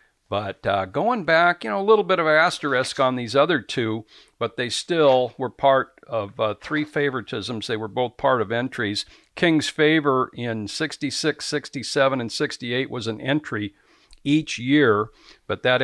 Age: 60-79